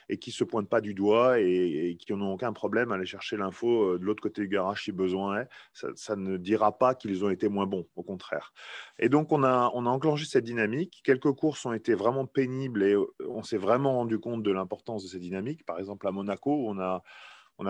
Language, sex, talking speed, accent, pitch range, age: French, male, 240 wpm, French, 100-130 Hz, 30-49